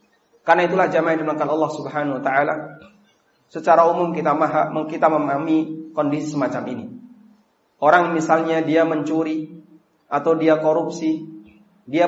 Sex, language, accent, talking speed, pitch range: male, Indonesian, native, 125 wpm, 150-190 Hz